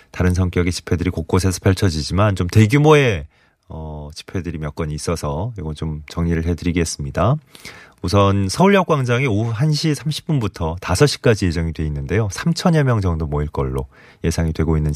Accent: native